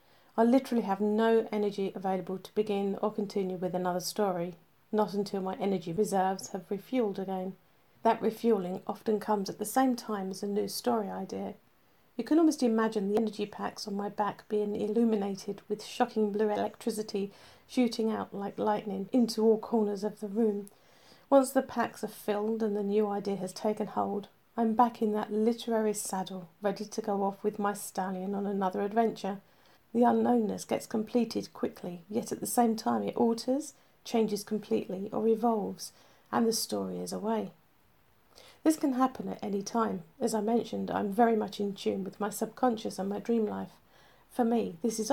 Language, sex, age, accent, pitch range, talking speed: English, female, 40-59, British, 200-230 Hz, 180 wpm